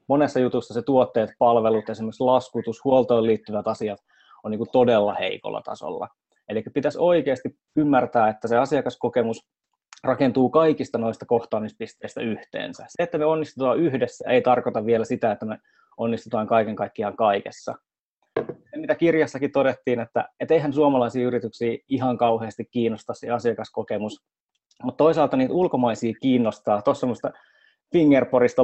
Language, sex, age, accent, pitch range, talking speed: Finnish, male, 20-39, native, 115-145 Hz, 130 wpm